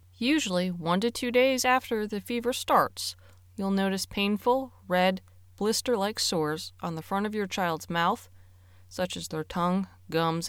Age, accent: 20-39, American